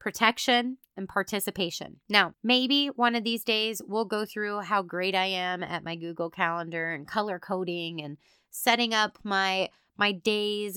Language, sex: English, female